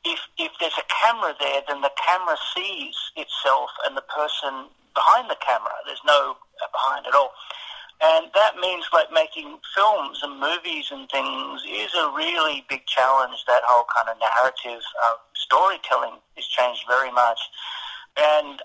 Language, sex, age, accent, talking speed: English, male, 50-69, British, 160 wpm